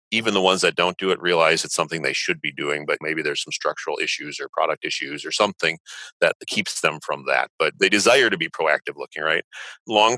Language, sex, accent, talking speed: English, male, American, 230 wpm